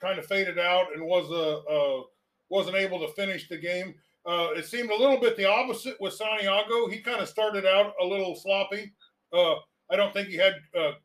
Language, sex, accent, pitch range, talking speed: English, male, American, 175-220 Hz, 215 wpm